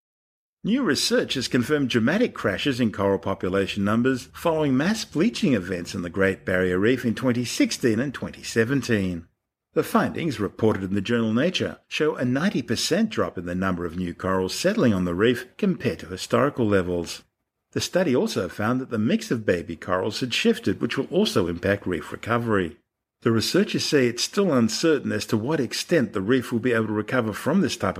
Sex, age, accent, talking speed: male, 50-69, Australian, 185 wpm